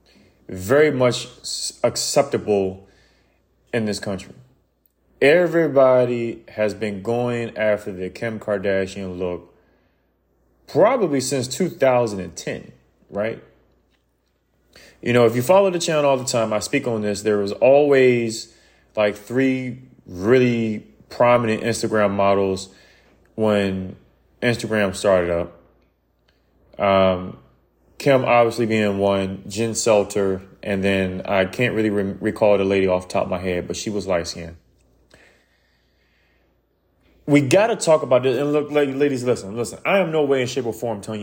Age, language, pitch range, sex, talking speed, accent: 20-39, English, 90-125 Hz, male, 130 wpm, American